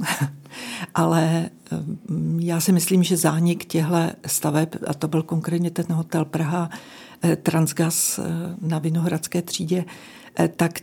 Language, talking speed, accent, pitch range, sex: Czech, 110 wpm, native, 160-175 Hz, female